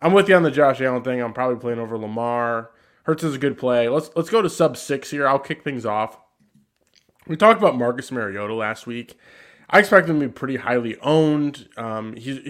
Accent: American